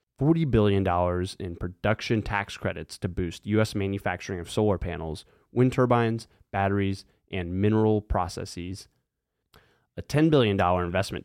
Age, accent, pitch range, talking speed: 20-39, American, 90-115 Hz, 115 wpm